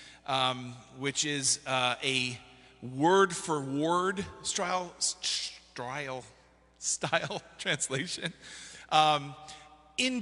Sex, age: male, 40-59